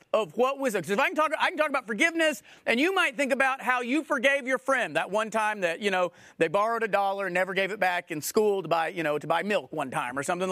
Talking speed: 290 wpm